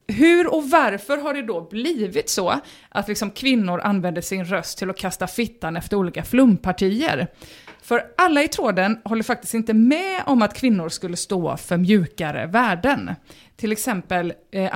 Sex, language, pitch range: female, English, 190-285 Hz